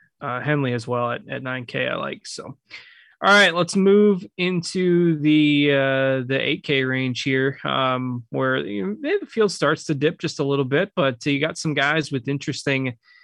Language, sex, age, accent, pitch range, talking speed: English, male, 20-39, American, 130-160 Hz, 185 wpm